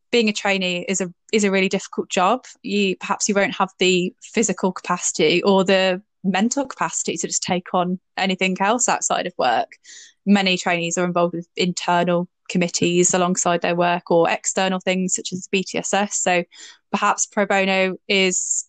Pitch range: 185-210 Hz